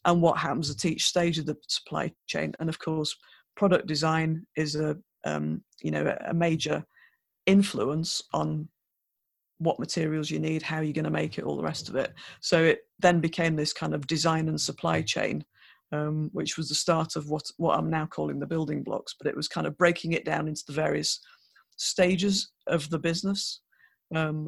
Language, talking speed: English, 195 wpm